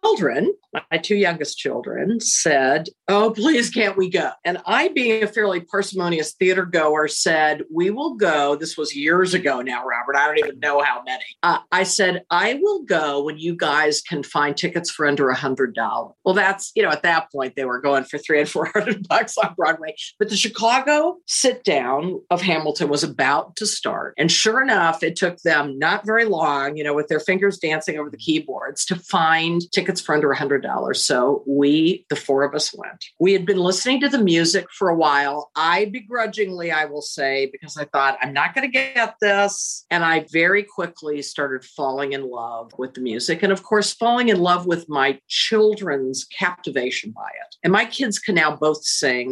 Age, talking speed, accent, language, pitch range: 50-69, 200 wpm, American, English, 145-205 Hz